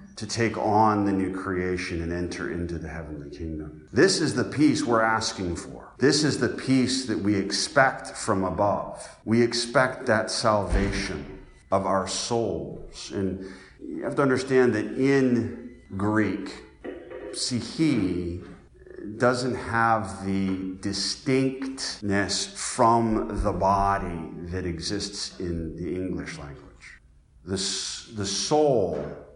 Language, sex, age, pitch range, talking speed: English, male, 40-59, 95-115 Hz, 125 wpm